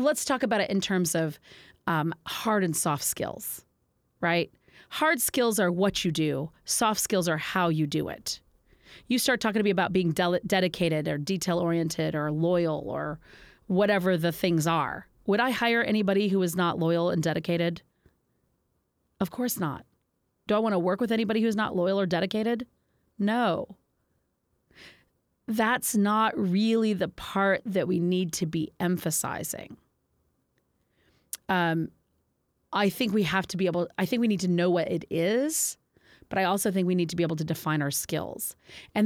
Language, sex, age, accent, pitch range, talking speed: English, female, 30-49, American, 165-215 Hz, 175 wpm